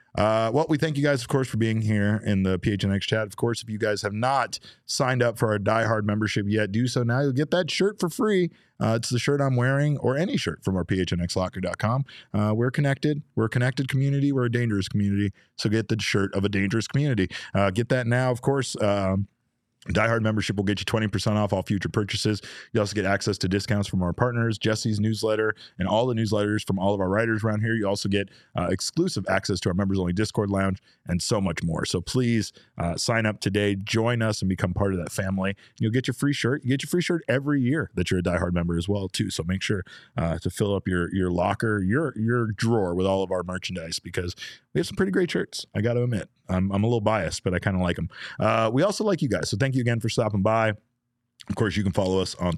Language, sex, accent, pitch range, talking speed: English, male, American, 95-120 Hz, 250 wpm